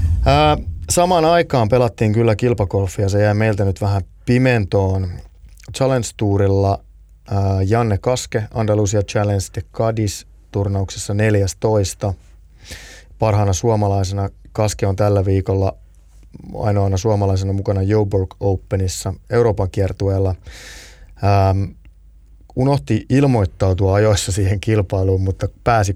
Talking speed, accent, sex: 95 wpm, native, male